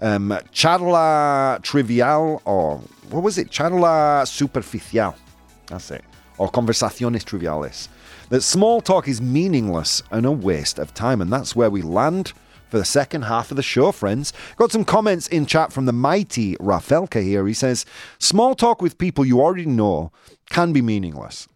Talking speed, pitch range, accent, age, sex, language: 160 wpm, 100-160 Hz, British, 30-49, male, English